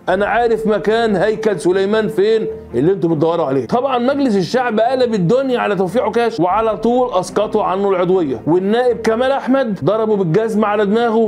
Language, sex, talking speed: Arabic, male, 160 wpm